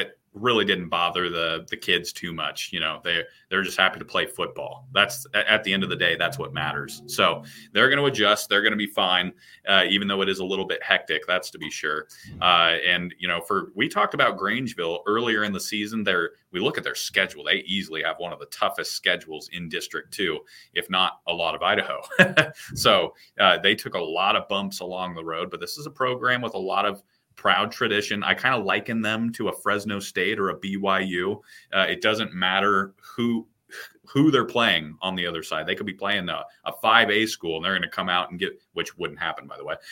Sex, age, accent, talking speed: male, 30-49, American, 230 wpm